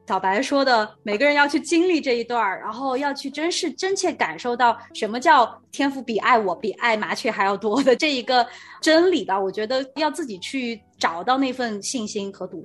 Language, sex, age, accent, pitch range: Chinese, female, 20-39, native, 210-305 Hz